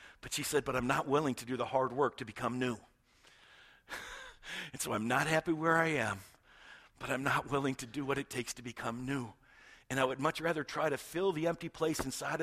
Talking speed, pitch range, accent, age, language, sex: 225 wpm, 120-145 Hz, American, 50-69, English, male